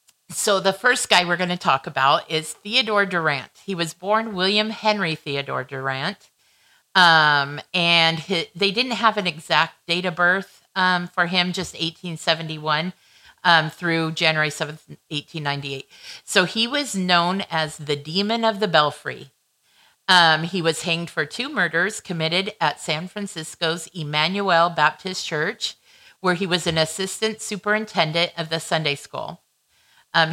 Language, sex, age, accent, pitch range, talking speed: English, female, 50-69, American, 160-195 Hz, 145 wpm